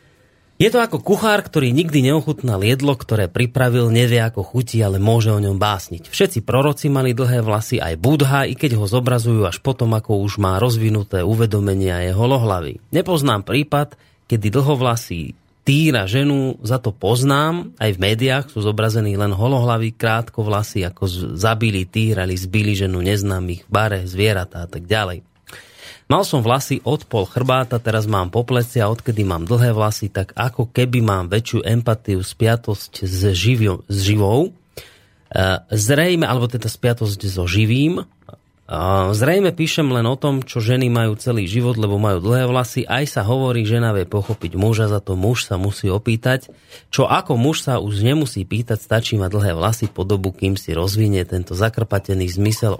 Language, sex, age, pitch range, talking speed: Slovak, male, 30-49, 100-125 Hz, 165 wpm